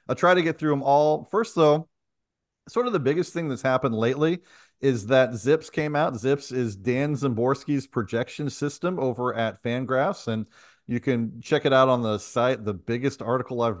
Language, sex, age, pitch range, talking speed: English, male, 40-59, 115-145 Hz, 190 wpm